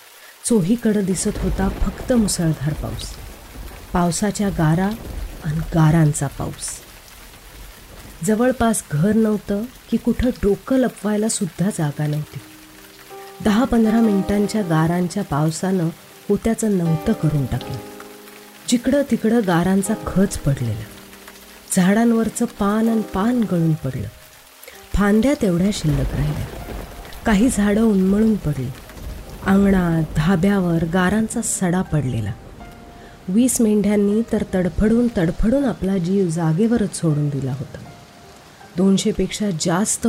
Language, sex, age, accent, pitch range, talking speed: Marathi, female, 30-49, native, 160-215 Hz, 100 wpm